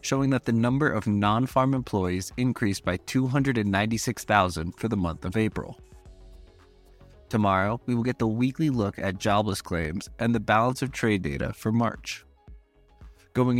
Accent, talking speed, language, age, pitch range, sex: American, 150 wpm, English, 20-39, 95-125 Hz, male